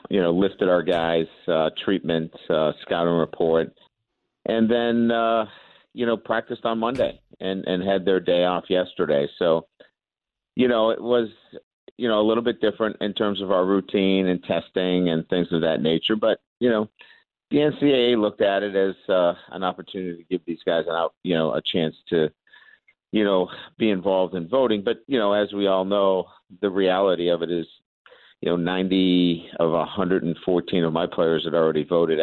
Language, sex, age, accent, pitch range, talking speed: English, male, 50-69, American, 85-110 Hz, 185 wpm